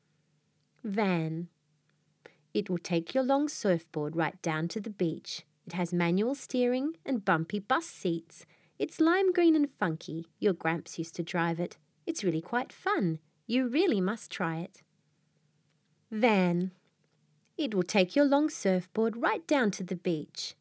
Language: English